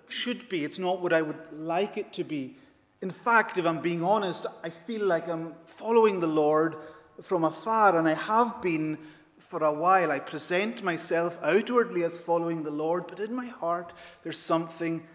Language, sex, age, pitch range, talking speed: English, male, 30-49, 160-205 Hz, 185 wpm